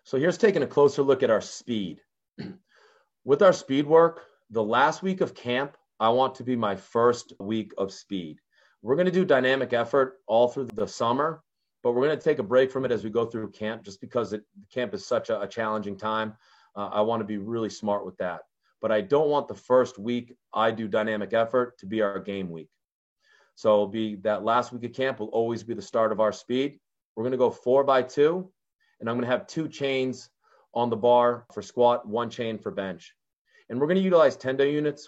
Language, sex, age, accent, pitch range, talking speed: English, male, 30-49, American, 105-135 Hz, 215 wpm